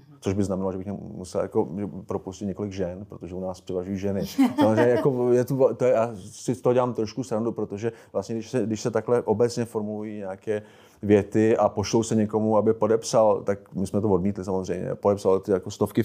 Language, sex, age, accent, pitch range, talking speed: Czech, male, 30-49, native, 95-110 Hz, 200 wpm